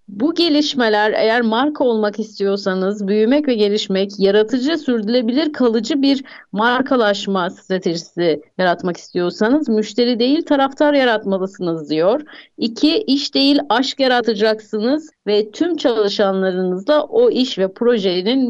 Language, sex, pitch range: Turkish, female, 195-275 Hz